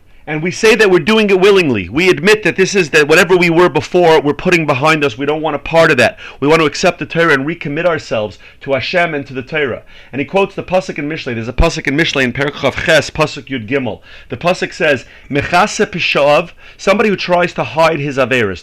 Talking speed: 240 wpm